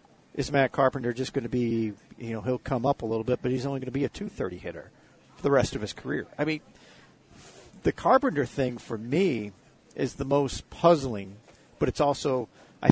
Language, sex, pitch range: English, male, 120-150 Hz